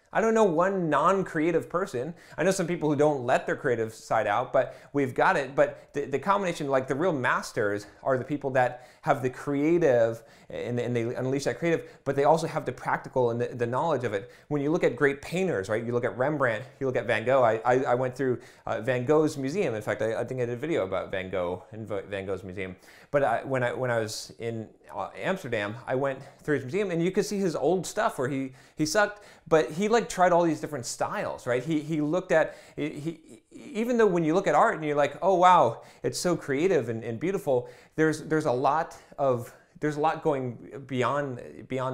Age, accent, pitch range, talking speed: 30-49, American, 125-155 Hz, 230 wpm